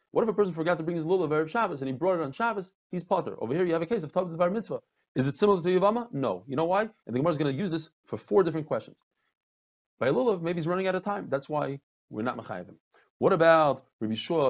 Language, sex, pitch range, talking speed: English, male, 130-195 Hz, 275 wpm